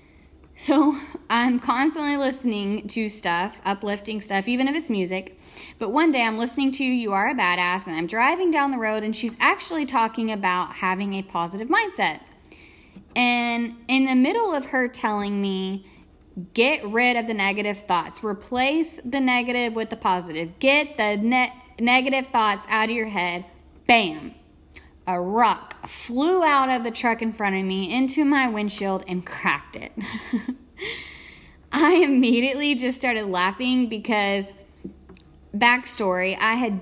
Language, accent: English, American